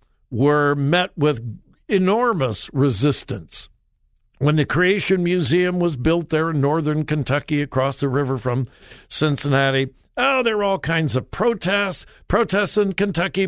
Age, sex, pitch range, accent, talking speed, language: 60-79, male, 120-175 Hz, American, 135 wpm, English